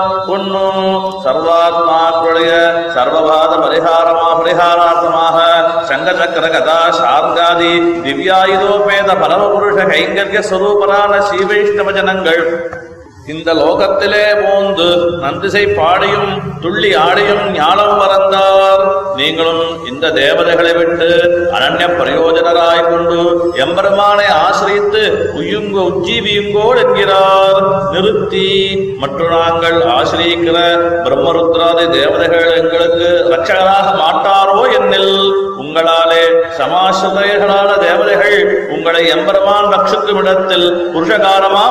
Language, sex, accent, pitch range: Tamil, male, native, 170-195 Hz